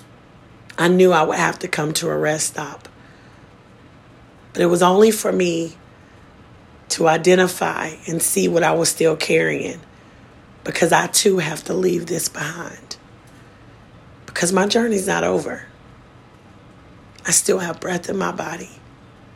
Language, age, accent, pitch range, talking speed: English, 40-59, American, 120-185 Hz, 145 wpm